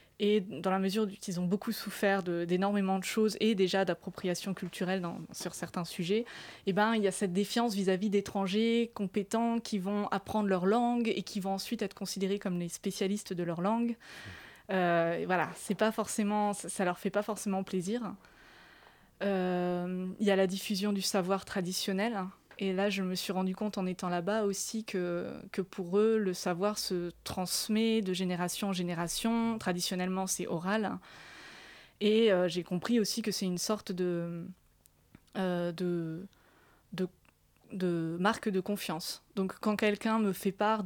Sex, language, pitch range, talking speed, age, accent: female, French, 185-215 Hz, 170 wpm, 20-39, French